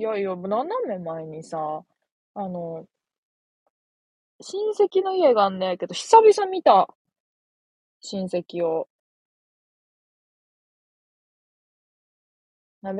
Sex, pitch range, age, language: female, 175-255 Hz, 20-39, Japanese